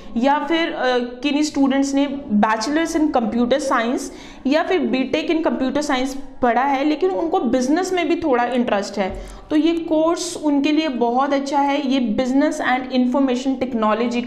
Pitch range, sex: 225-280 Hz, female